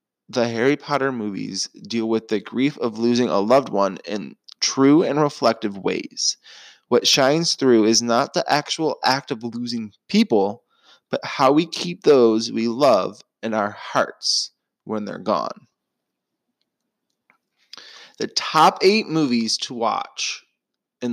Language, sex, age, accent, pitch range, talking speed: English, male, 20-39, American, 115-165 Hz, 140 wpm